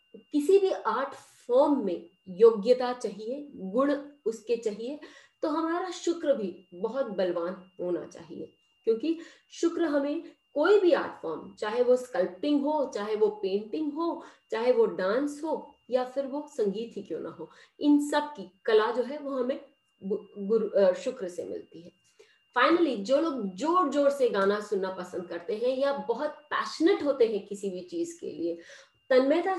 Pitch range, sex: 220-335 Hz, female